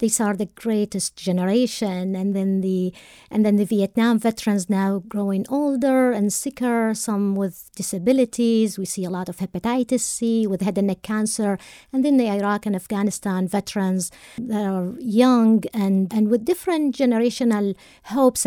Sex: female